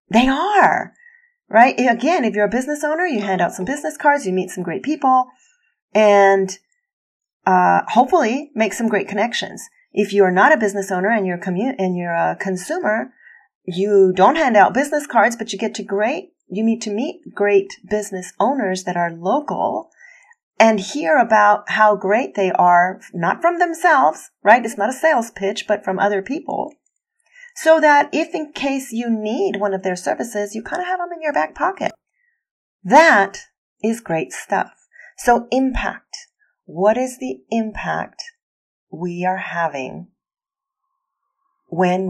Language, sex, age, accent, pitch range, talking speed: English, female, 40-59, American, 185-285 Hz, 165 wpm